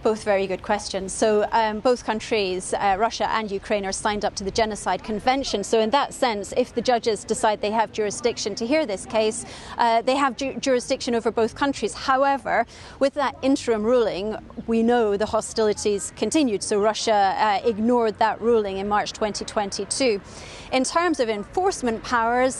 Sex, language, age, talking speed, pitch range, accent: female, English, 30-49, 175 wpm, 220-265 Hz, British